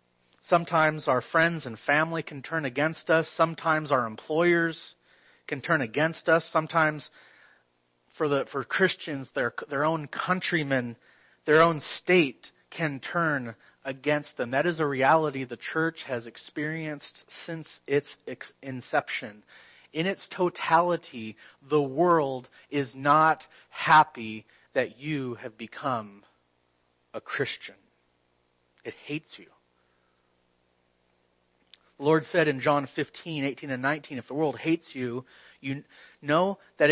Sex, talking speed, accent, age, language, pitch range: male, 125 wpm, American, 30-49, English, 115-160 Hz